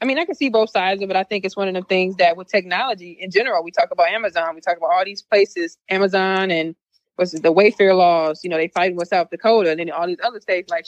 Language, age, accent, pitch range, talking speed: English, 20-39, American, 170-205 Hz, 290 wpm